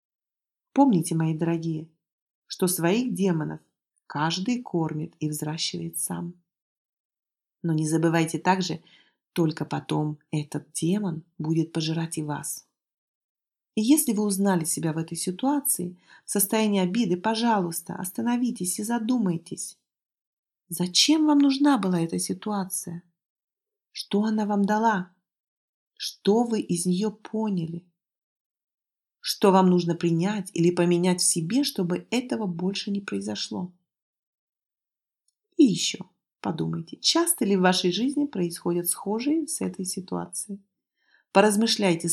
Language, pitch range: Russian, 165-210 Hz